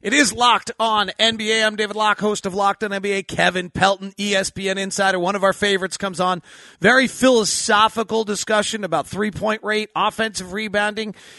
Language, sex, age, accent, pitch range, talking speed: English, male, 40-59, American, 190-225 Hz, 165 wpm